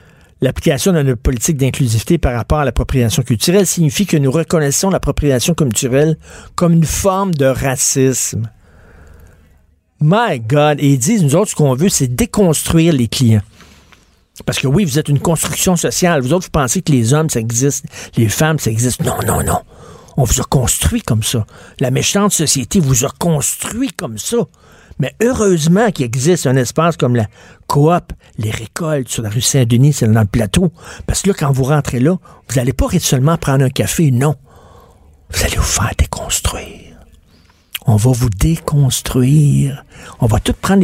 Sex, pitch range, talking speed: male, 110-160 Hz, 175 wpm